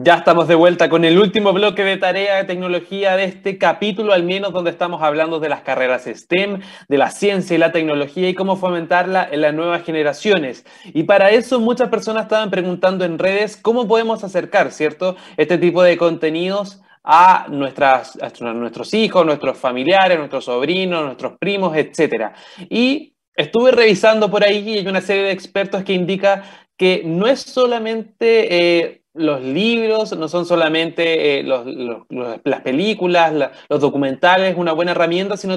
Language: Spanish